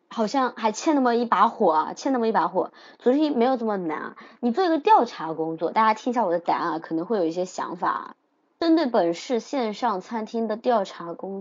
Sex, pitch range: male, 180-245 Hz